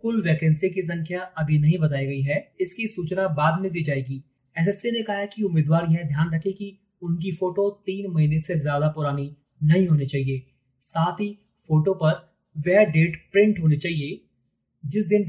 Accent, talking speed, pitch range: native, 105 wpm, 145-175 Hz